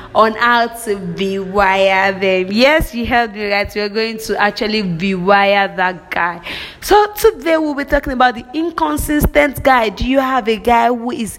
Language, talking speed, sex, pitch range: English, 185 wpm, female, 210-295 Hz